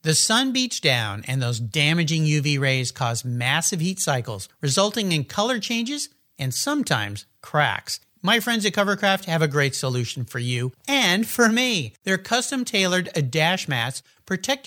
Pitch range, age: 140-205 Hz, 50-69